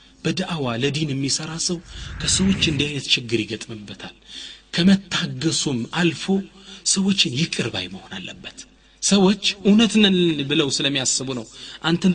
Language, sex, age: Amharic, male, 30-49